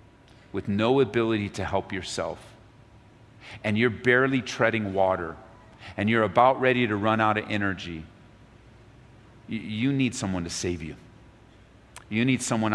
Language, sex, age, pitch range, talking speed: English, male, 40-59, 105-130 Hz, 135 wpm